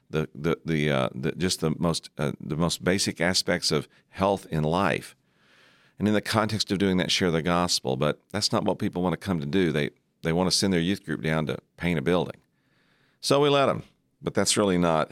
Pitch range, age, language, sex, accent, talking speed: 80-105 Hz, 50-69, English, male, American, 230 wpm